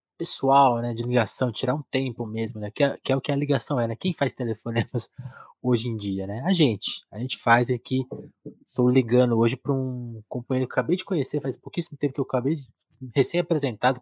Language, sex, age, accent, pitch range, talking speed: Portuguese, male, 20-39, Brazilian, 115-135 Hz, 215 wpm